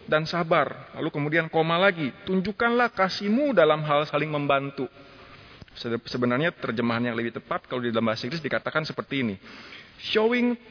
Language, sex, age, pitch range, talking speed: Indonesian, male, 30-49, 120-185 Hz, 150 wpm